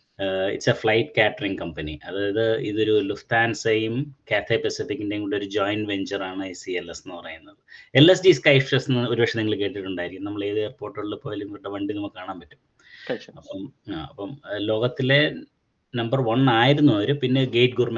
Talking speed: 150 wpm